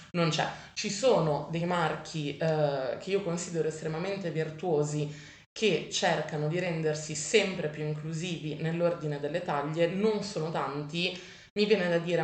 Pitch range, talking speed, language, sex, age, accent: 155-190 Hz, 140 wpm, Italian, female, 20-39, native